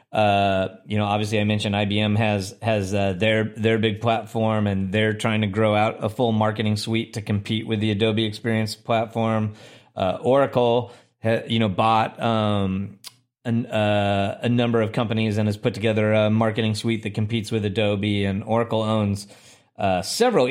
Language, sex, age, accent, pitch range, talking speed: English, male, 30-49, American, 105-120 Hz, 175 wpm